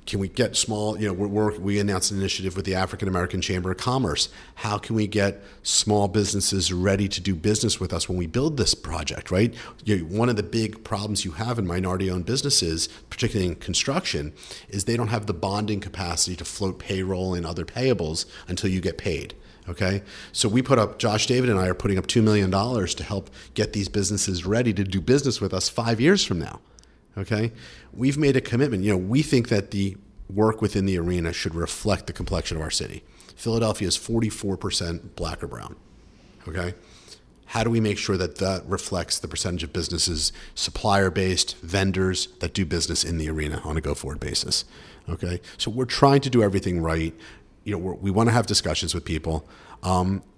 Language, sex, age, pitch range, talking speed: English, male, 50-69, 90-110 Hz, 200 wpm